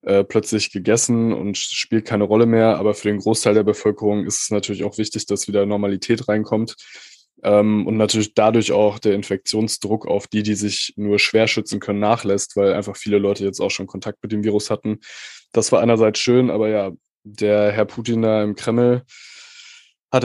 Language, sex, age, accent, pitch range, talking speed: German, male, 20-39, German, 105-120 Hz, 190 wpm